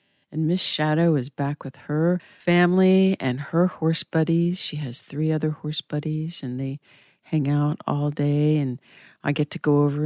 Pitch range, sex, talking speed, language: 150-185 Hz, female, 180 wpm, English